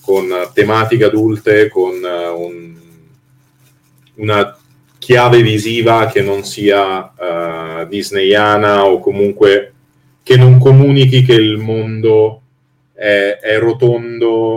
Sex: male